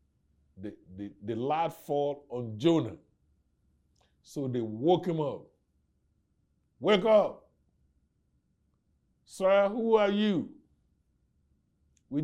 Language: English